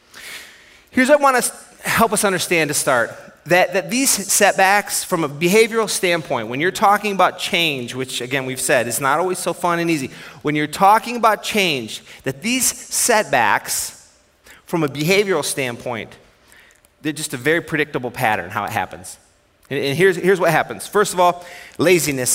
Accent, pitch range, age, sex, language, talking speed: American, 140-190 Hz, 30-49, male, English, 170 wpm